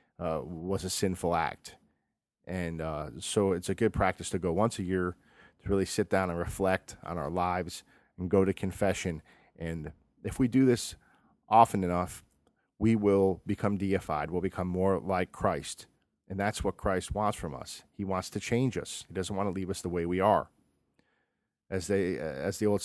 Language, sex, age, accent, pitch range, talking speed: English, male, 40-59, American, 90-105 Hz, 190 wpm